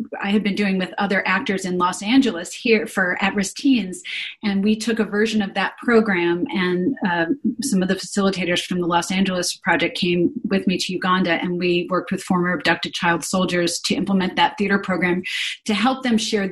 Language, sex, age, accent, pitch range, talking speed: English, female, 30-49, American, 180-210 Hz, 205 wpm